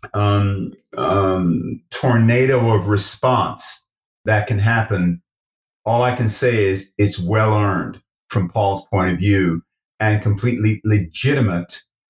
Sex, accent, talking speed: male, American, 115 wpm